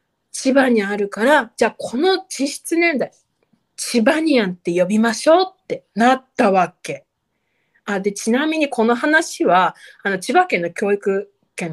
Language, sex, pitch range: Japanese, female, 180-275 Hz